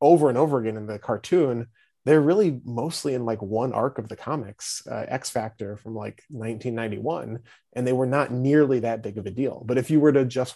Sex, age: male, 30-49